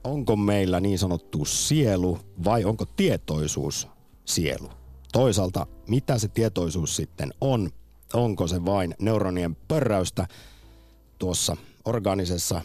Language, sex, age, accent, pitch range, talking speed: Finnish, male, 50-69, native, 90-120 Hz, 105 wpm